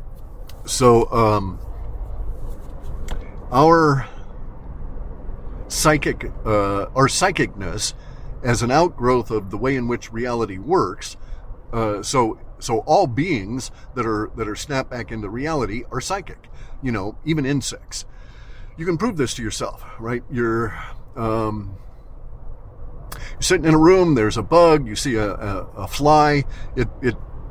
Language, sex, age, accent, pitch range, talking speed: English, male, 50-69, American, 105-135 Hz, 130 wpm